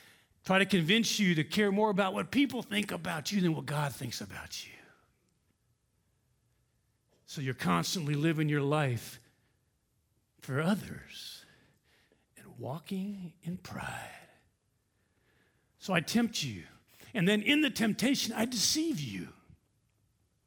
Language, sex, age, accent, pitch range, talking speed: English, male, 50-69, American, 135-210 Hz, 125 wpm